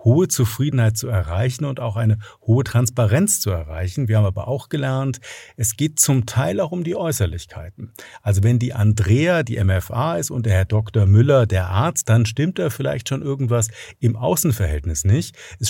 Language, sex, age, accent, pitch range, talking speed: German, male, 50-69, German, 100-130 Hz, 185 wpm